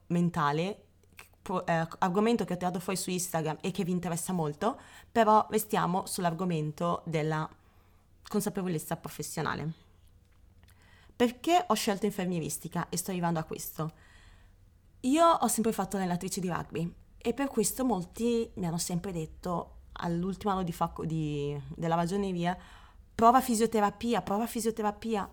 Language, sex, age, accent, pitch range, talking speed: Italian, female, 30-49, native, 165-215 Hz, 125 wpm